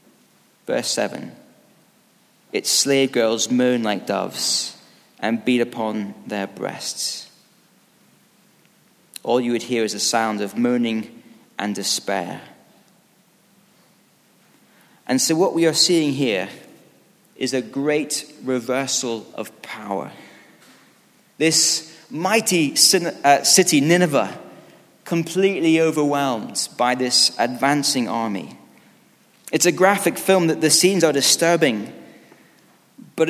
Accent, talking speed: British, 105 wpm